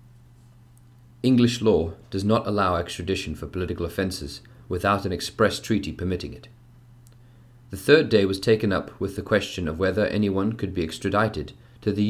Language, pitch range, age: English, 90-120 Hz, 30-49